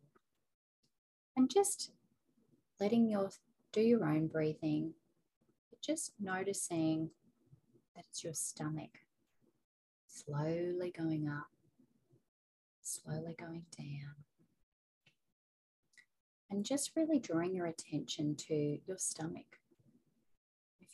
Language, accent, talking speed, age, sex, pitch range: English, Australian, 85 wpm, 30-49, female, 145-185 Hz